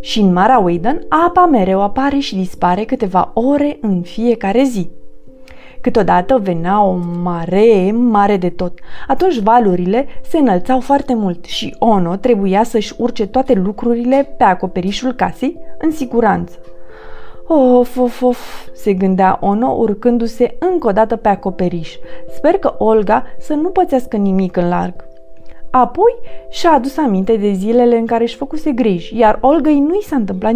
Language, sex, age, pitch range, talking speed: Romanian, female, 30-49, 190-270 Hz, 150 wpm